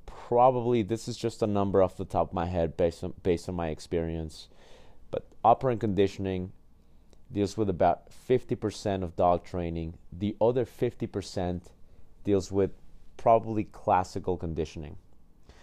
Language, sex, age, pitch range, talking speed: English, male, 30-49, 85-100 Hz, 135 wpm